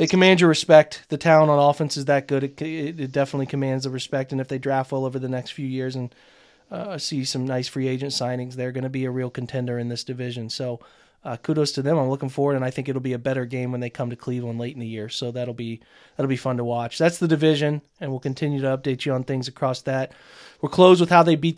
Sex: male